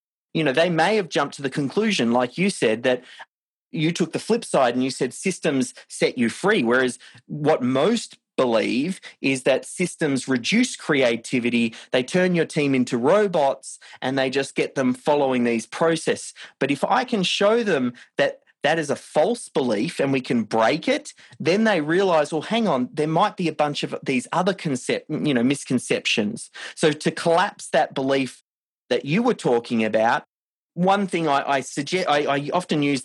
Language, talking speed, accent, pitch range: English, 185 wpm, Australian, 135-185 Hz